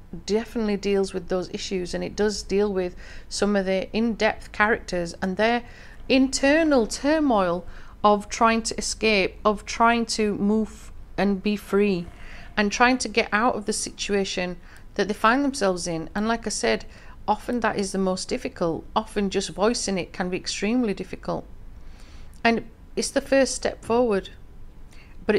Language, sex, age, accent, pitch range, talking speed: English, female, 40-59, British, 180-220 Hz, 160 wpm